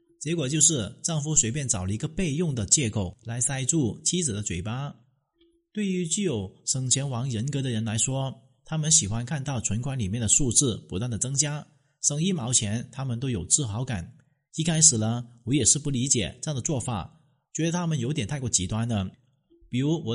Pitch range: 115-160 Hz